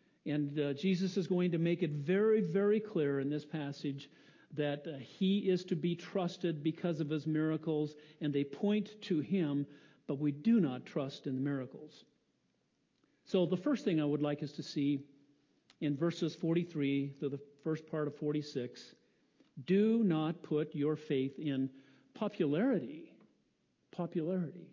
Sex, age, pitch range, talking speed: male, 50-69, 150-190 Hz, 160 wpm